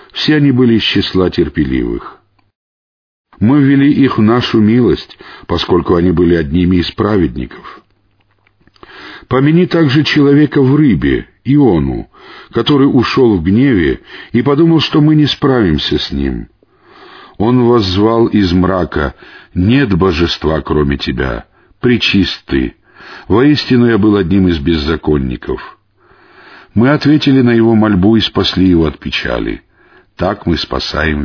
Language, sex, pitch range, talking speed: Russian, male, 85-125 Hz, 125 wpm